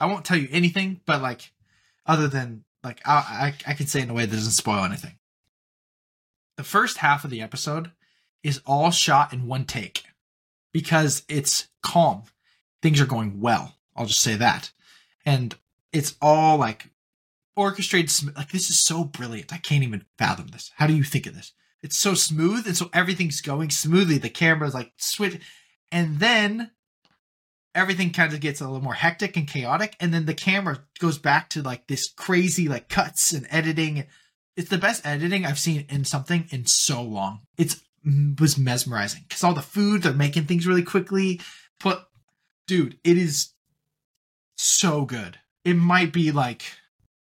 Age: 20-39